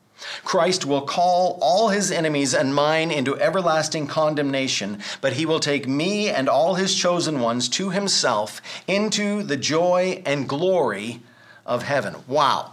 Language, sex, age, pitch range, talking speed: English, male, 50-69, 125-175 Hz, 145 wpm